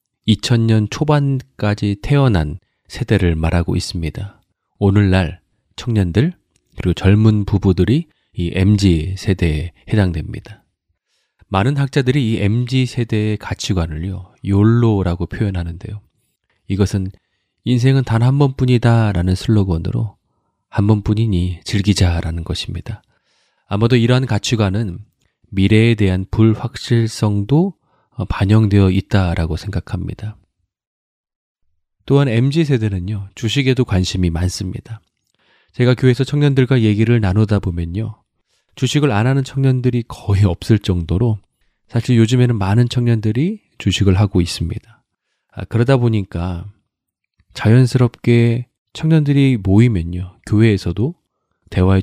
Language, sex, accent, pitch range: Korean, male, native, 95-120 Hz